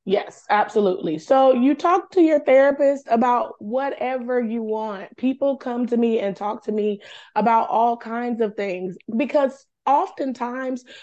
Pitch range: 205-255 Hz